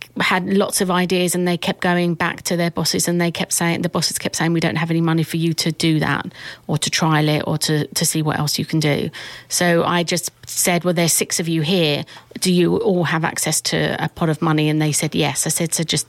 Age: 40-59